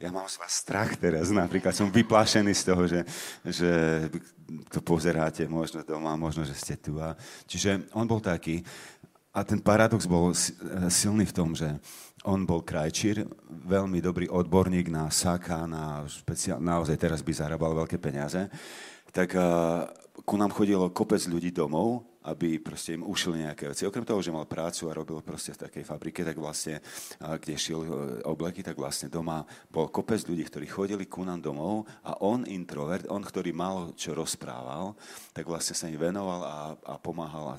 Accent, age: native, 40-59